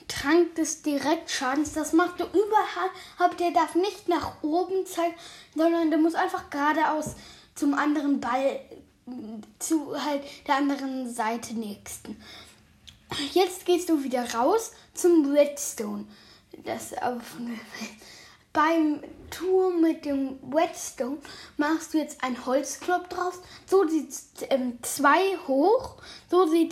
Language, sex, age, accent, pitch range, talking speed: German, female, 10-29, German, 275-355 Hz, 130 wpm